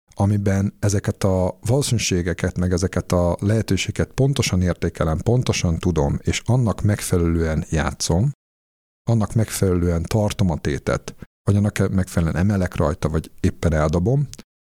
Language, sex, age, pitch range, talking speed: Hungarian, male, 50-69, 85-110 Hz, 120 wpm